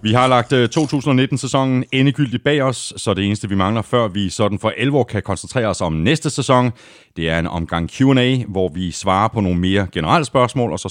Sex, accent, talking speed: male, native, 210 wpm